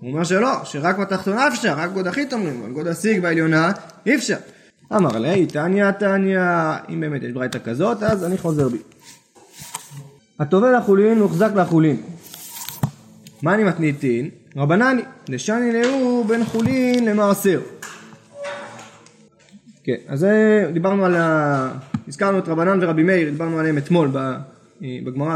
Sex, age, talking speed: male, 20-39, 135 wpm